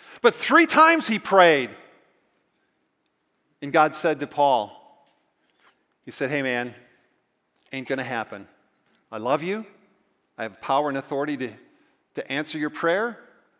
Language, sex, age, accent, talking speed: English, male, 50-69, American, 135 wpm